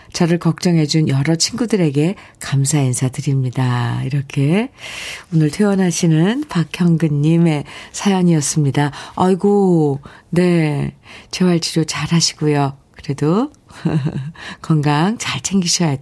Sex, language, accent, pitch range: female, Korean, native, 150-200 Hz